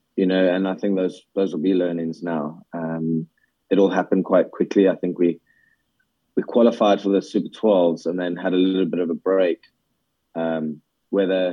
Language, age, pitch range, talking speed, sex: English, 20-39, 85-95 Hz, 195 wpm, male